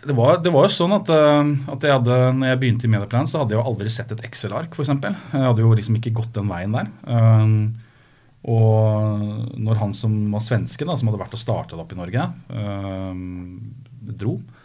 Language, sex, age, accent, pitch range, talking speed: English, male, 30-49, Norwegian, 100-125 Hz, 205 wpm